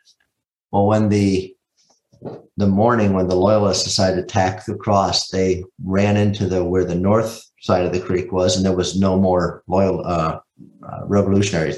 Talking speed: 175 wpm